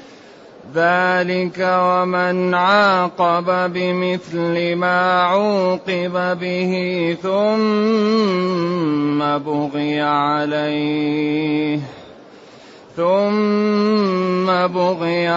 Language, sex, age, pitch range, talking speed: English, male, 30-49, 150-185 Hz, 45 wpm